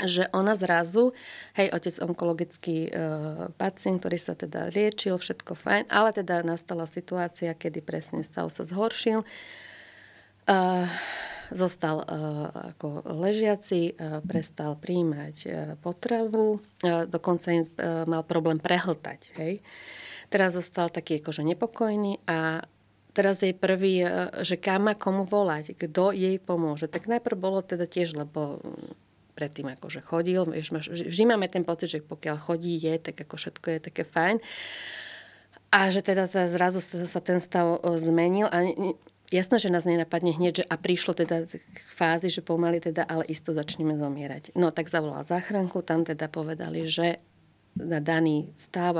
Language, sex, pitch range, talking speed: Slovak, female, 160-185 Hz, 145 wpm